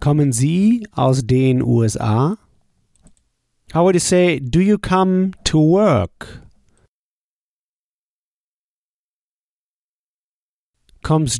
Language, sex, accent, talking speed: German, male, German, 80 wpm